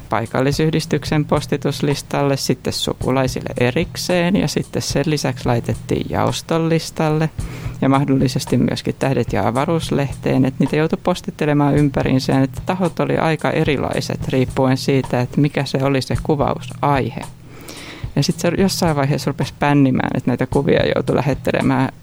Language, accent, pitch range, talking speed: Finnish, native, 130-150 Hz, 130 wpm